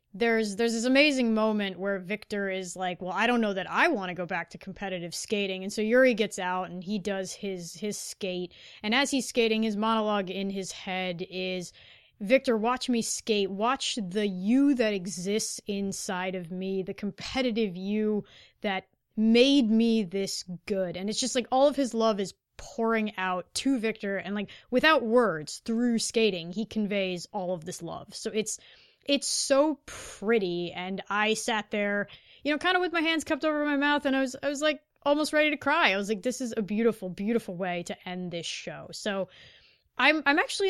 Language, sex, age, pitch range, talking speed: English, female, 20-39, 190-240 Hz, 200 wpm